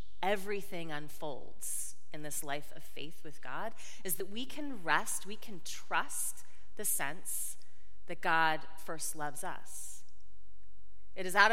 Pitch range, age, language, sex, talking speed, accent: 145-195 Hz, 30-49, English, female, 140 wpm, American